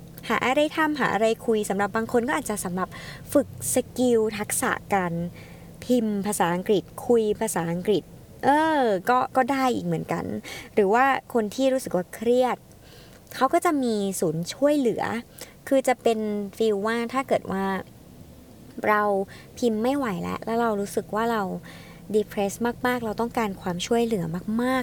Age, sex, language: 20-39, male, Thai